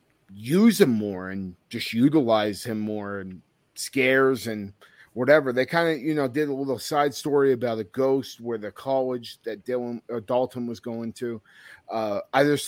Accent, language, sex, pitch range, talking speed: American, English, male, 110-140 Hz, 180 wpm